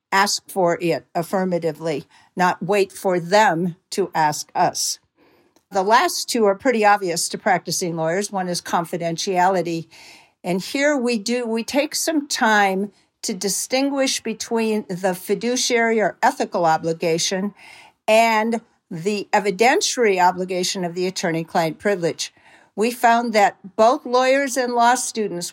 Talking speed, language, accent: 130 wpm, English, American